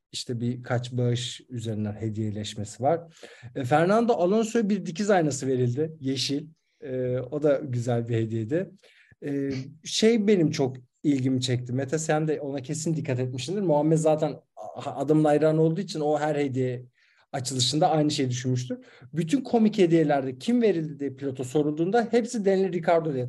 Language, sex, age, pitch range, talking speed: Turkish, male, 50-69, 125-160 Hz, 150 wpm